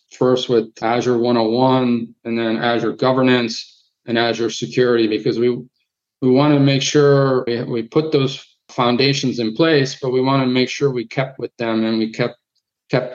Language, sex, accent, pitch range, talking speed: English, male, American, 115-130 Hz, 175 wpm